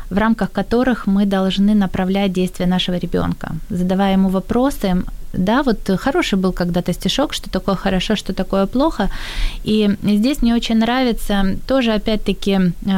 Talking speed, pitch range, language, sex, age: 145 wpm, 185-210 Hz, Ukrainian, female, 20-39